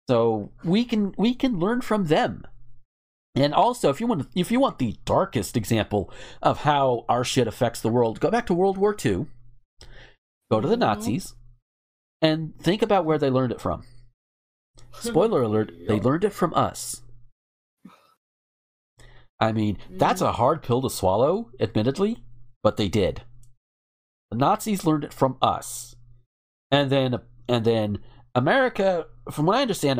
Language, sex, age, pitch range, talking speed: English, male, 40-59, 110-145 Hz, 155 wpm